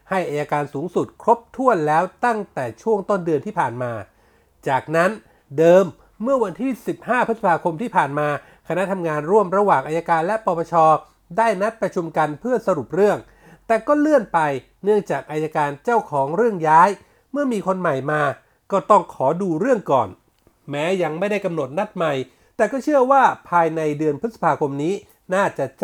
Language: Thai